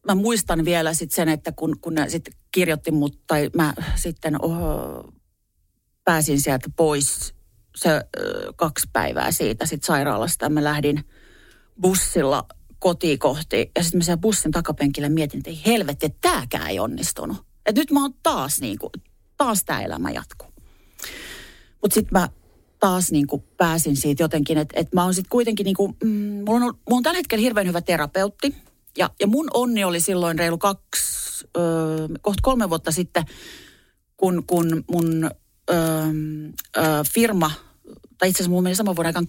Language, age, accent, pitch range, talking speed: Finnish, 40-59, native, 150-190 Hz, 155 wpm